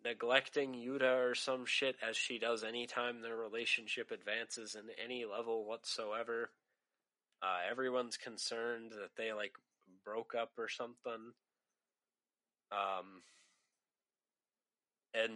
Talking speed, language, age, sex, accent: 110 wpm, English, 20-39, male, American